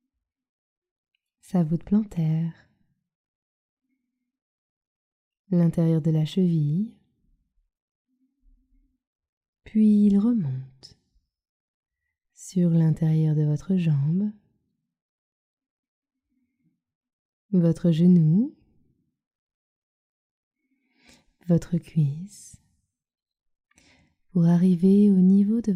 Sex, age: female, 20-39